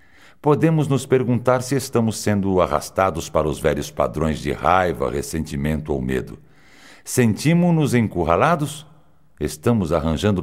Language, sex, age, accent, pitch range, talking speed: Portuguese, male, 60-79, Brazilian, 80-120 Hz, 115 wpm